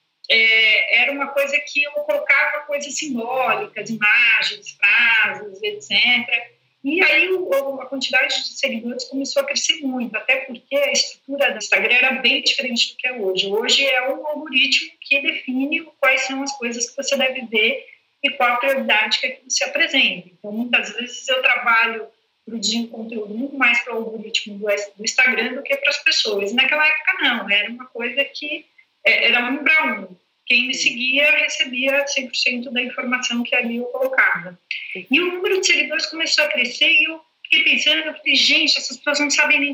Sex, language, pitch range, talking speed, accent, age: female, Portuguese, 240-295 Hz, 175 wpm, Brazilian, 40-59